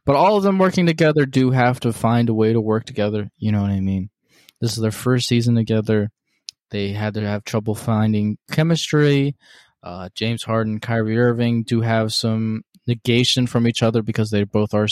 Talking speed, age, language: 200 wpm, 20-39, English